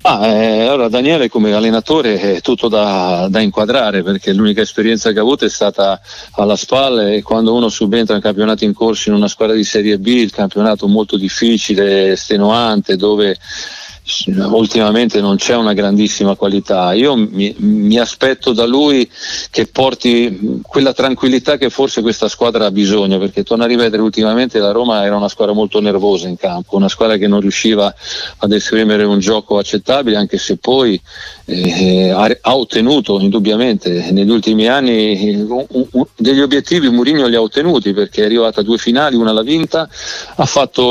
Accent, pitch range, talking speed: native, 105-120 Hz, 165 wpm